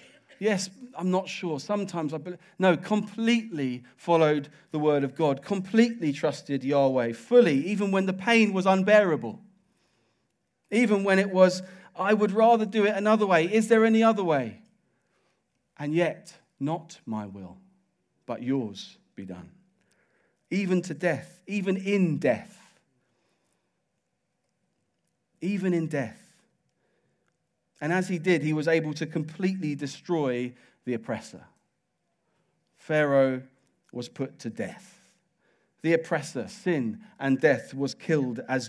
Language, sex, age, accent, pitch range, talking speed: English, male, 40-59, British, 140-190 Hz, 130 wpm